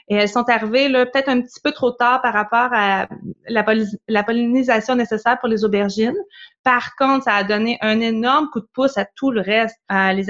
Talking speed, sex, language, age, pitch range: 220 wpm, female, French, 20-39, 205-235 Hz